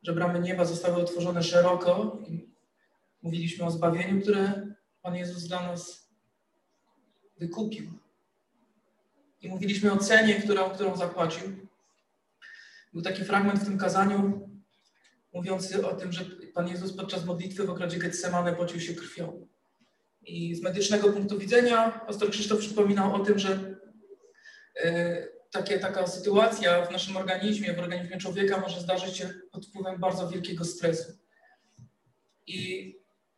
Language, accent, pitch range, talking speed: Polish, native, 180-210 Hz, 130 wpm